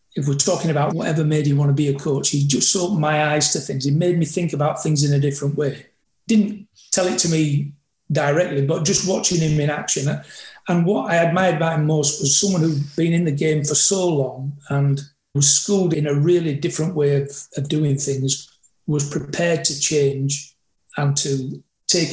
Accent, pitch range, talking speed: British, 140-170 Hz, 210 wpm